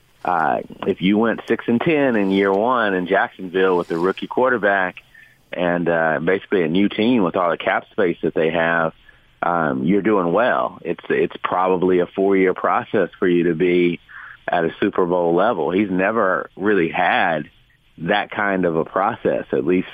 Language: English